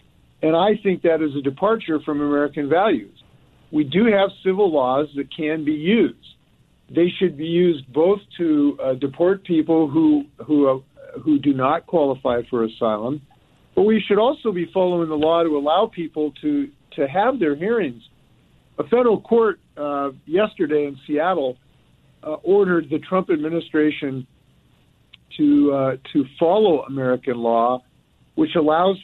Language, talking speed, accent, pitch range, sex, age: English, 150 wpm, American, 140-175 Hz, male, 50-69